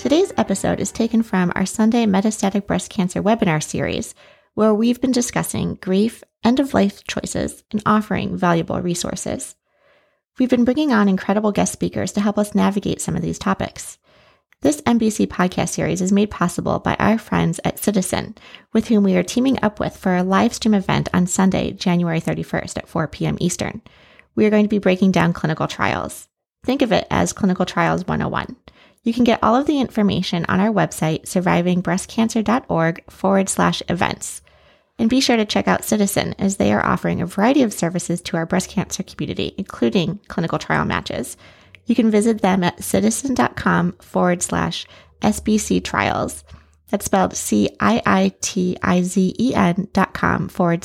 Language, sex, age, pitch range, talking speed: English, female, 30-49, 175-220 Hz, 165 wpm